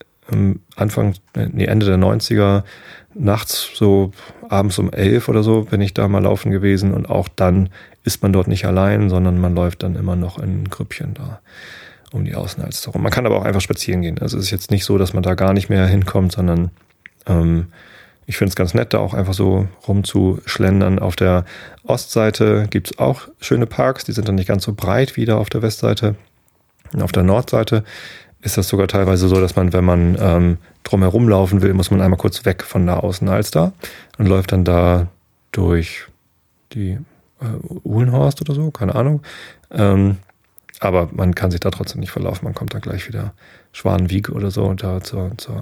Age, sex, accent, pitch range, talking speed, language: 30-49, male, German, 95-105 Hz, 200 wpm, German